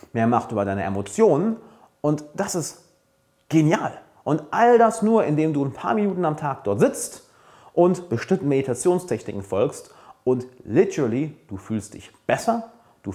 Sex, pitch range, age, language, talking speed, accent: male, 115-190 Hz, 30-49, German, 150 wpm, German